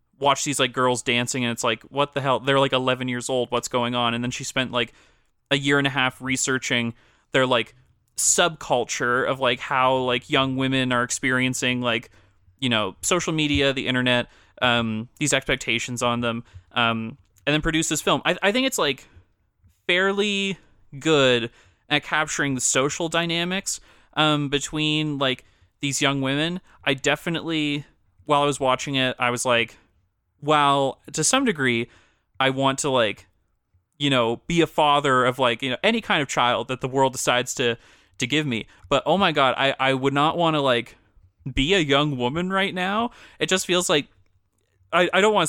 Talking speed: 185 wpm